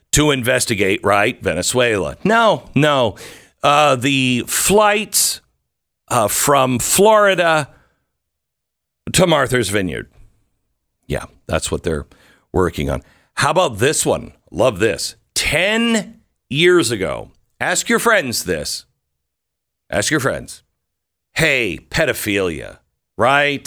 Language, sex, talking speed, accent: English, male, 100 wpm, American